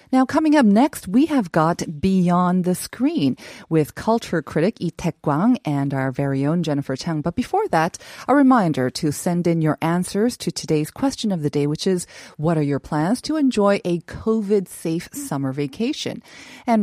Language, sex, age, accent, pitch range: Korean, female, 30-49, American, 155-220 Hz